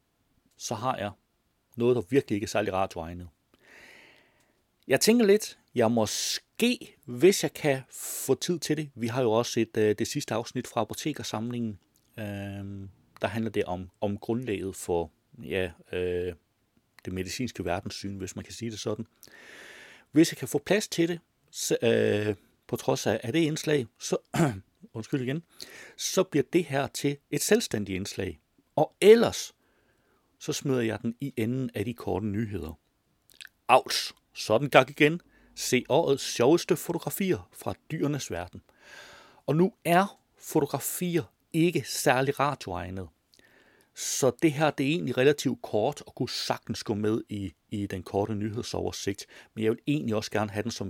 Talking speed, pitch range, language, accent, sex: 155 wpm, 100-145 Hz, Danish, native, male